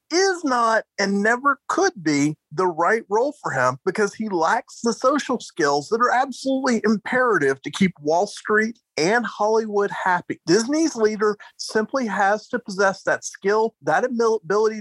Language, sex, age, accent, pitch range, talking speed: English, male, 40-59, American, 160-230 Hz, 155 wpm